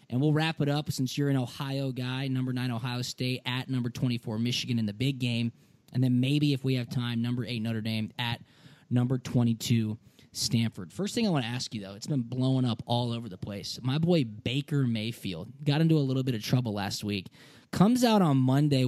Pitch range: 120-140 Hz